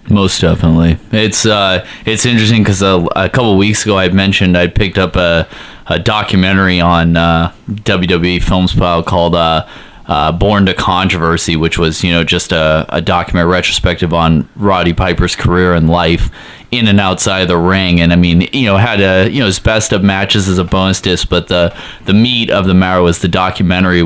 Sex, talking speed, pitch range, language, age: male, 200 wpm, 90-100 Hz, English, 20-39